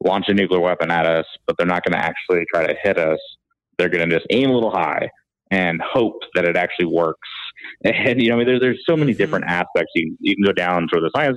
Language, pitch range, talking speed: English, 85-115 Hz, 260 wpm